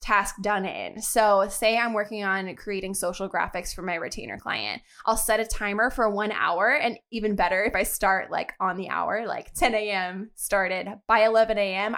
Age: 20-39